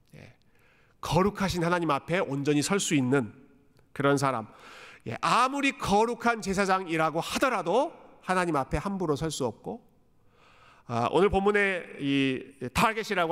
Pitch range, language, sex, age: 140-210 Hz, Korean, male, 40-59